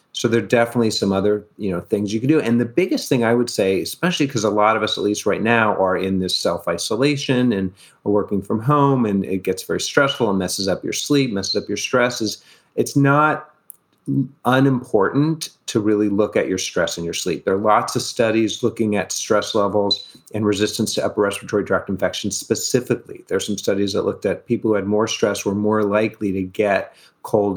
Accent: American